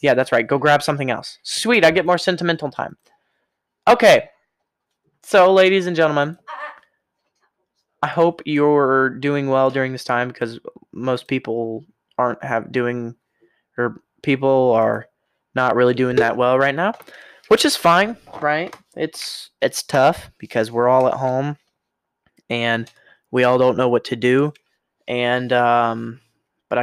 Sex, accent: male, American